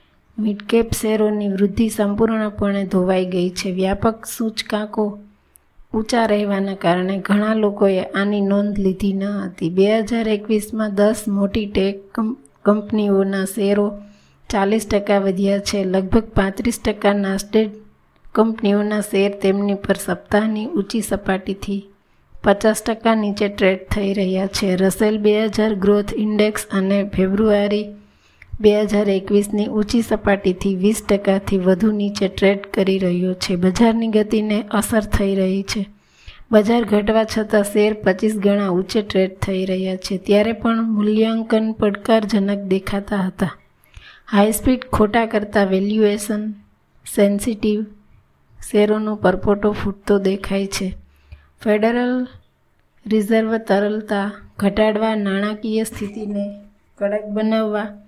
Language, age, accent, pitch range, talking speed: Gujarati, 20-39, native, 195-215 Hz, 115 wpm